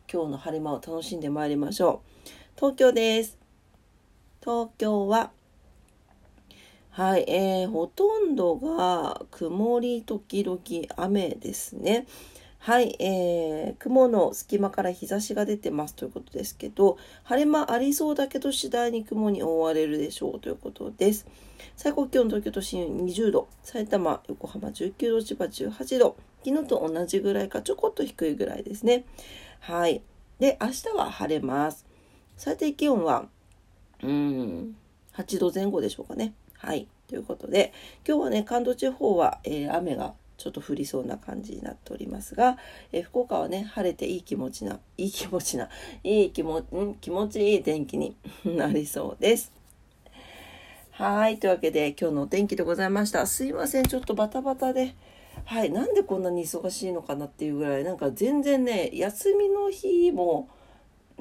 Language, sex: Japanese, female